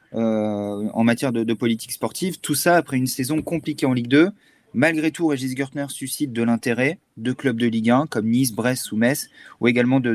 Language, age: French, 30-49